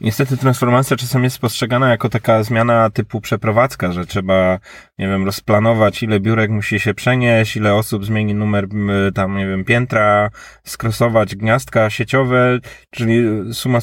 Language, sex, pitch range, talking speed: Polish, male, 105-125 Hz, 145 wpm